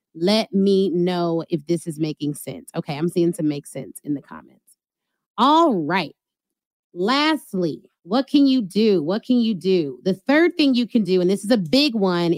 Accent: American